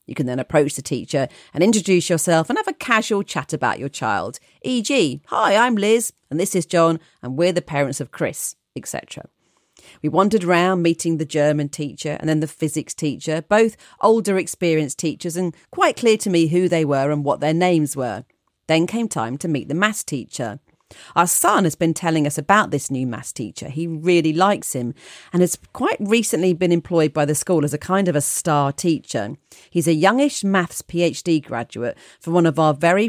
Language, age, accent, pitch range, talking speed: English, 40-59, British, 145-185 Hz, 200 wpm